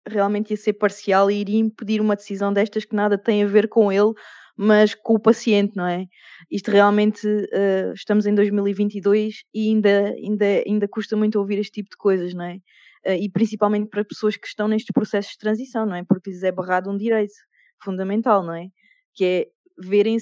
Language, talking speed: Portuguese, 200 wpm